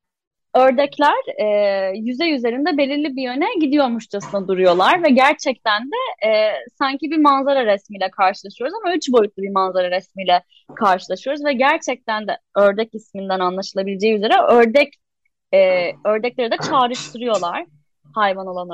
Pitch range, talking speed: 205-285 Hz, 125 wpm